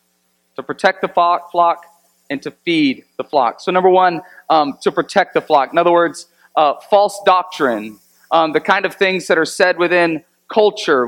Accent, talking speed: American, 175 wpm